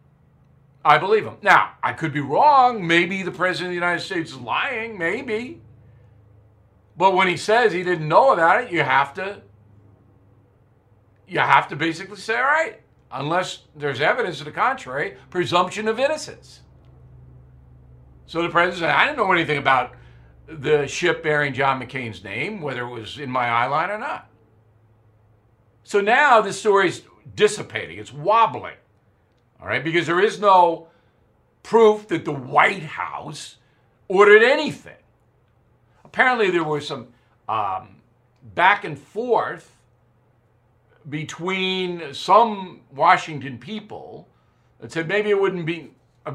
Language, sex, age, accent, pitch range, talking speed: English, male, 60-79, American, 120-185 Hz, 140 wpm